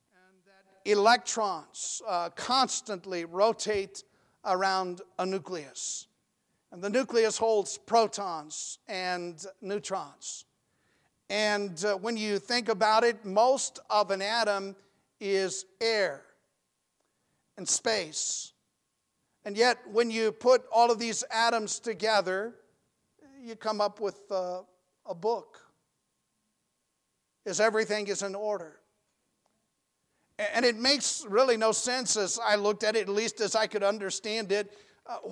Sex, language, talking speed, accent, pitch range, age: male, English, 120 wpm, American, 200-245 Hz, 50-69